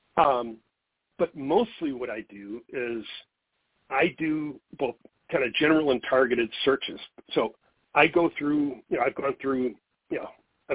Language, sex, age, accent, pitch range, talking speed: English, male, 50-69, American, 125-155 Hz, 150 wpm